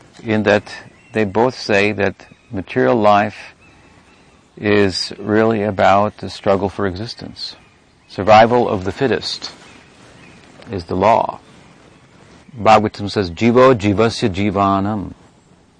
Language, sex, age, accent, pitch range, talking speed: English, male, 50-69, American, 95-115 Hz, 105 wpm